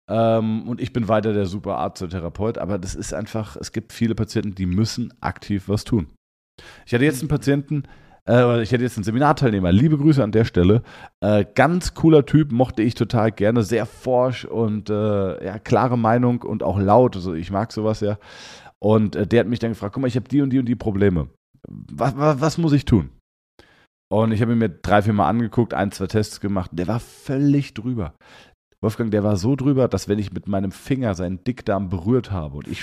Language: German